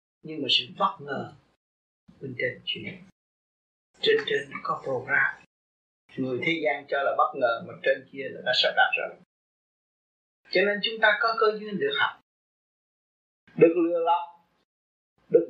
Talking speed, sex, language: 155 wpm, male, Vietnamese